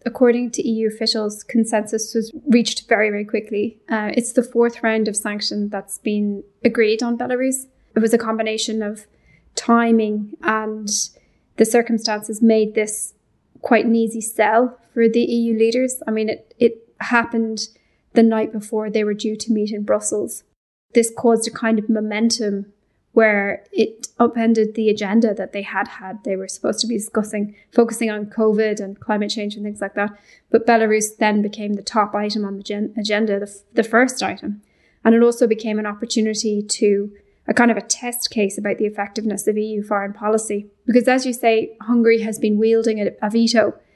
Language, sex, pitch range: English, female, 210-230 Hz